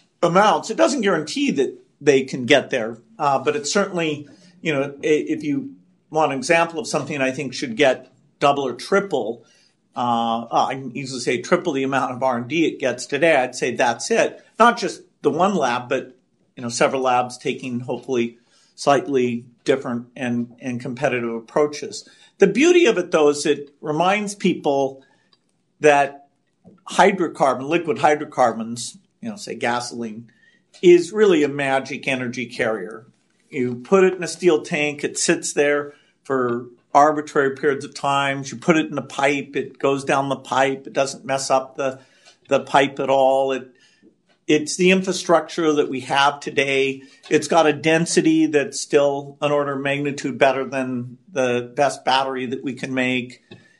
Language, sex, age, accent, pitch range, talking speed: English, male, 50-69, American, 130-170 Hz, 165 wpm